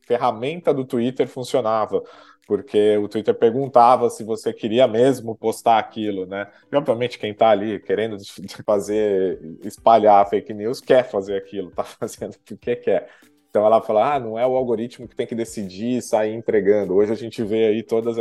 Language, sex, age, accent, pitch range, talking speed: Portuguese, male, 20-39, Brazilian, 105-130 Hz, 180 wpm